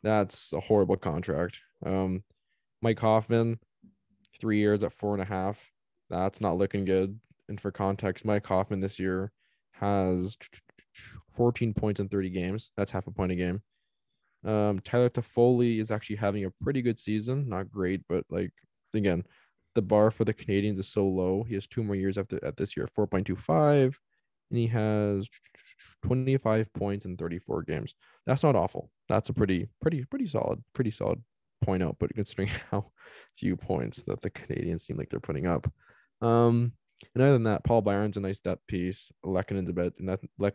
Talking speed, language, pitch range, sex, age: 175 wpm, English, 95-110 Hz, male, 10-29